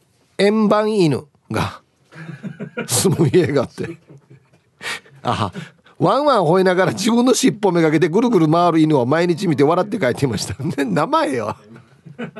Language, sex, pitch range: Japanese, male, 140-210 Hz